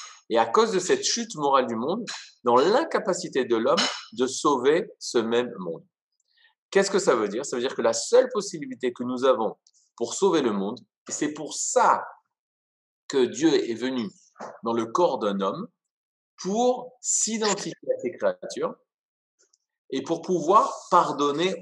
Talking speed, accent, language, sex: 160 wpm, French, French, male